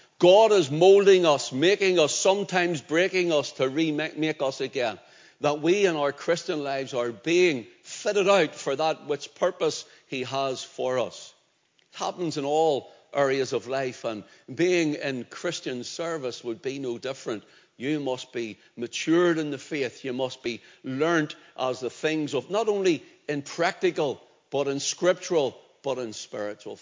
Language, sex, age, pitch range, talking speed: English, male, 60-79, 130-175 Hz, 160 wpm